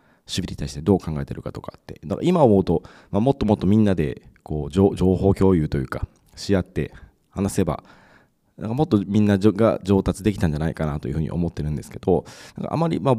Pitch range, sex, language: 85-110 Hz, male, Japanese